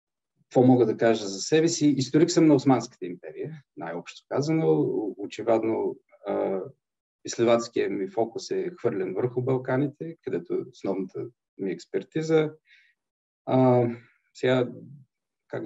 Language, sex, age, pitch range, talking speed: Bulgarian, male, 40-59, 115-140 Hz, 110 wpm